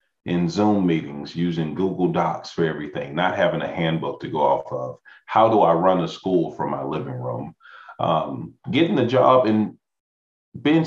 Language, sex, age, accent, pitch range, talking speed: English, male, 40-59, American, 85-105 Hz, 175 wpm